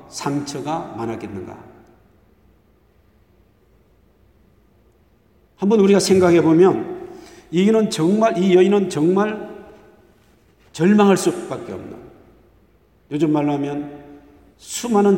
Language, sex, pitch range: Korean, male, 145-190 Hz